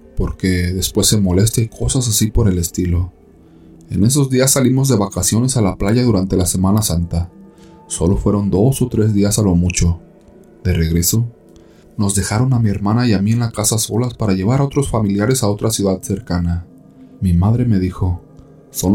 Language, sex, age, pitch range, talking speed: Spanish, male, 30-49, 90-115 Hz, 190 wpm